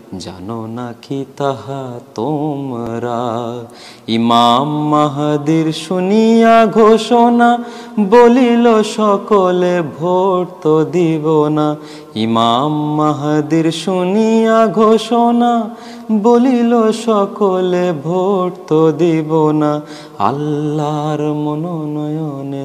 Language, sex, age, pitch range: Urdu, male, 30-49, 120-160 Hz